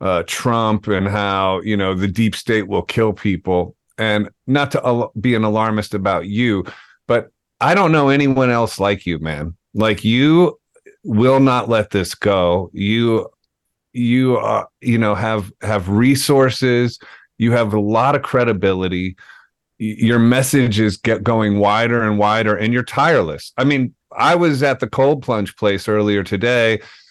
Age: 40-59